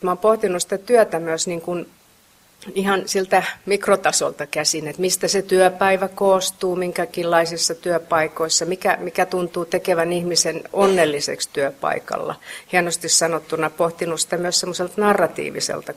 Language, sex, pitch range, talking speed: Finnish, female, 160-195 Hz, 120 wpm